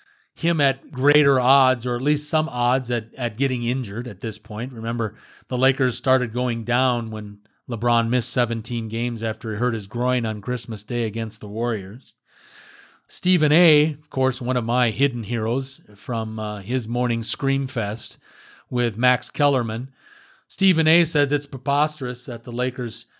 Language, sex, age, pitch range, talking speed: English, male, 40-59, 115-145 Hz, 165 wpm